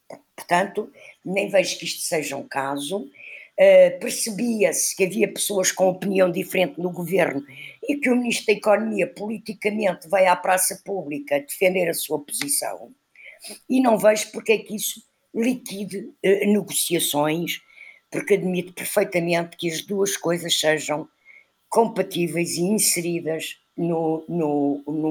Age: 50-69